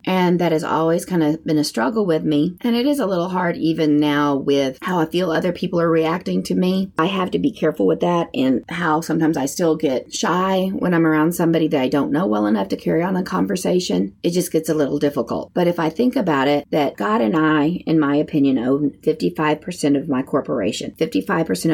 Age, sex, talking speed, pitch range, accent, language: 30-49, female, 230 wpm, 145-180 Hz, American, English